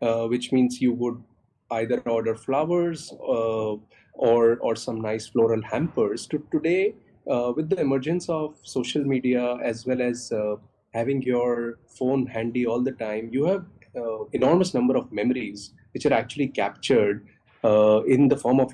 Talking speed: 165 wpm